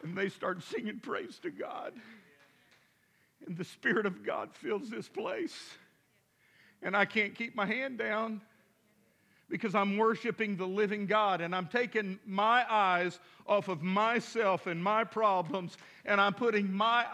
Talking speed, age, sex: 150 wpm, 50-69, male